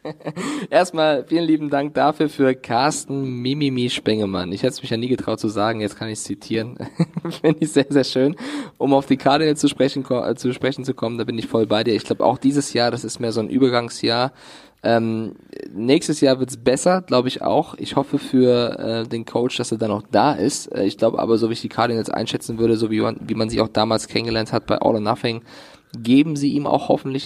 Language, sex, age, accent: German, male, 20-39, German